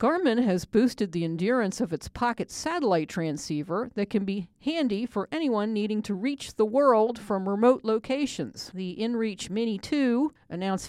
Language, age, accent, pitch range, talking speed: English, 50-69, American, 170-245 Hz, 160 wpm